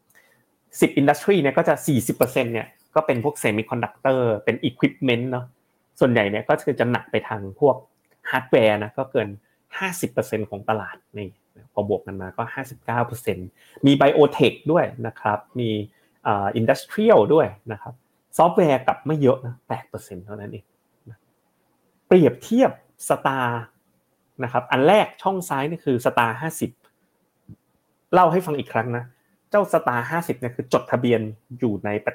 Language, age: Thai, 30-49